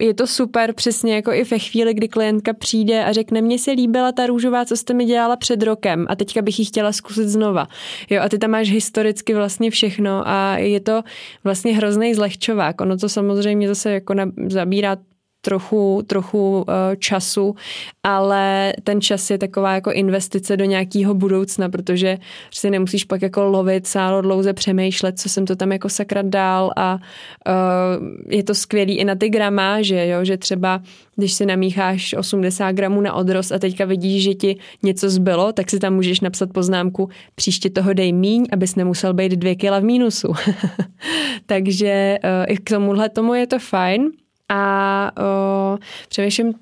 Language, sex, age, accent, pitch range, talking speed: Czech, female, 20-39, native, 190-220 Hz, 170 wpm